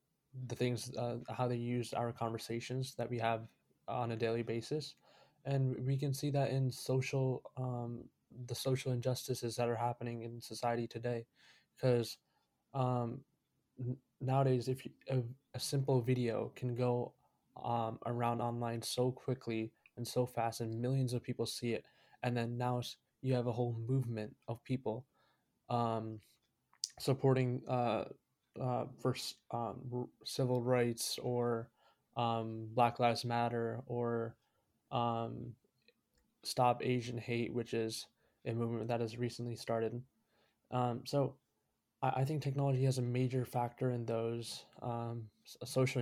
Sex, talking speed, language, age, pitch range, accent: male, 135 wpm, English, 20-39, 115-130 Hz, American